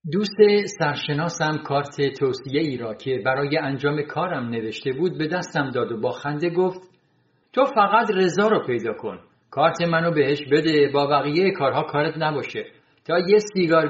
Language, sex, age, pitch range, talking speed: Persian, male, 50-69, 145-195 Hz, 160 wpm